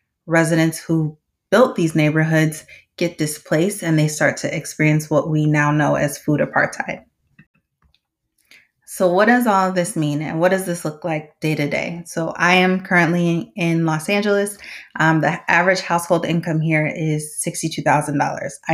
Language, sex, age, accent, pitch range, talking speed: English, female, 20-39, American, 160-185 Hz, 160 wpm